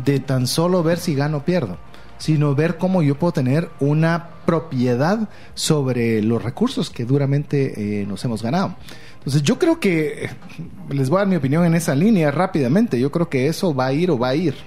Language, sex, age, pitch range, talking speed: Spanish, male, 40-59, 135-180 Hz, 205 wpm